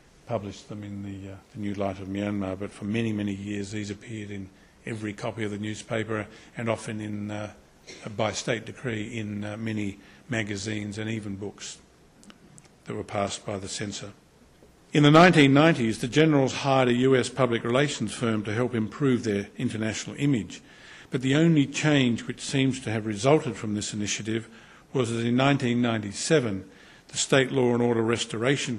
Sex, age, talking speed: male, 50-69, 170 wpm